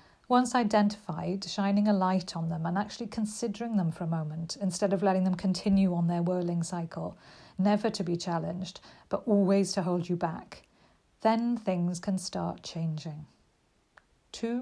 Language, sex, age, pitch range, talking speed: English, female, 50-69, 175-215 Hz, 160 wpm